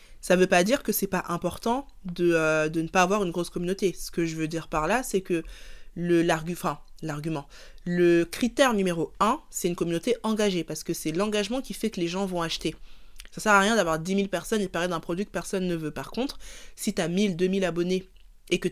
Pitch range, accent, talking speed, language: 165-200 Hz, French, 255 wpm, French